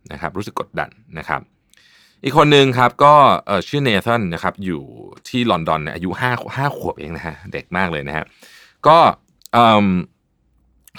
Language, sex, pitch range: Thai, male, 90-130 Hz